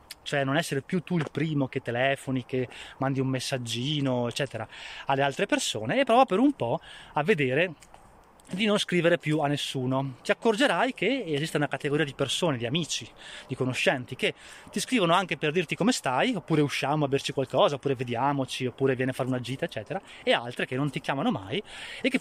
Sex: male